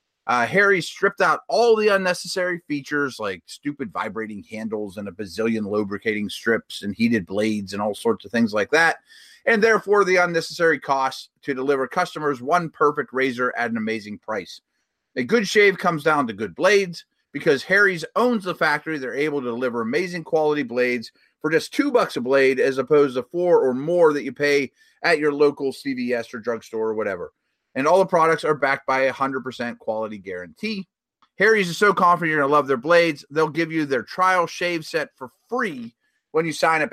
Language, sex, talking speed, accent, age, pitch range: English, male, 195 wpm, American, 30-49, 130-185 Hz